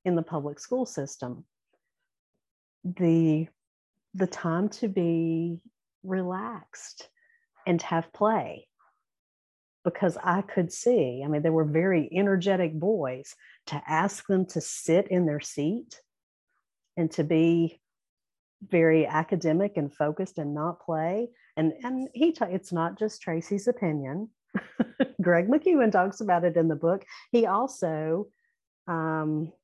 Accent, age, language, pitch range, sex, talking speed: American, 50-69, English, 160-210 Hz, female, 130 wpm